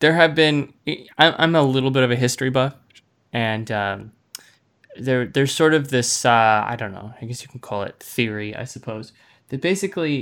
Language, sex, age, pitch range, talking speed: English, male, 10-29, 115-140 Hz, 195 wpm